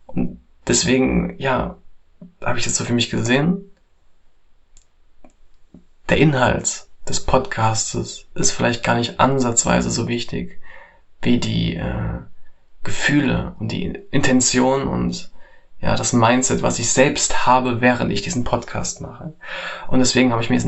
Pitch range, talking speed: 115-145 Hz, 135 wpm